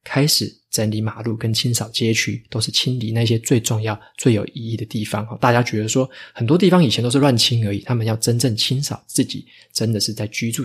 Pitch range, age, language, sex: 110-130 Hz, 20-39, Chinese, male